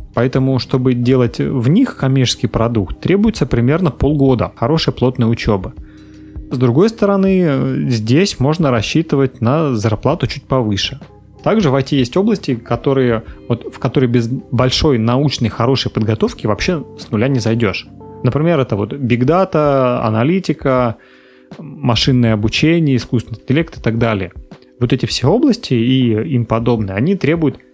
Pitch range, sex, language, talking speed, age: 115-140 Hz, male, Russian, 135 wpm, 30-49